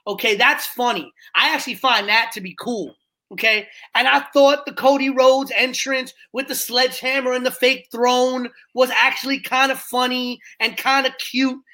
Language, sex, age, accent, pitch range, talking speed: English, male, 30-49, American, 250-310 Hz, 175 wpm